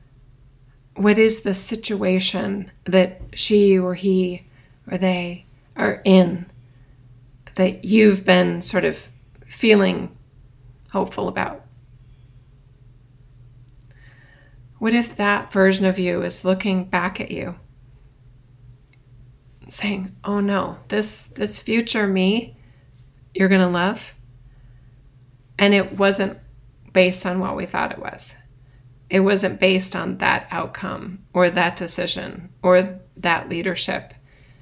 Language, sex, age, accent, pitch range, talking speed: English, female, 30-49, American, 125-190 Hz, 110 wpm